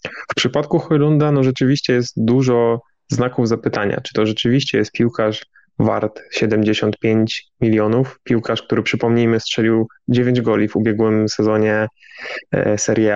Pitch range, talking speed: 115-130 Hz, 125 wpm